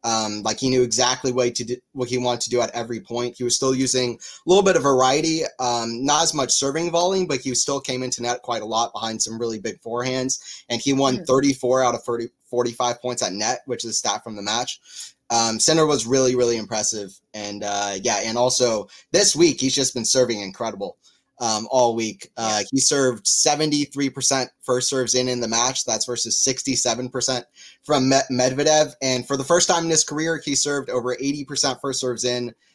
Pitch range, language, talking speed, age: 120-140 Hz, English, 205 wpm, 20-39